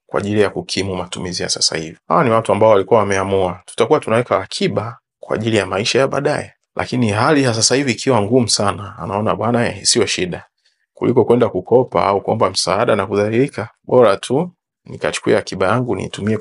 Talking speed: 185 wpm